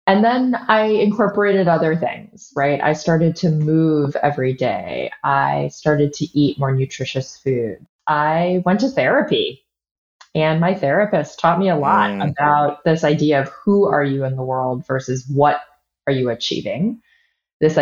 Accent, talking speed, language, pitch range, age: American, 160 wpm, English, 140-205 Hz, 20-39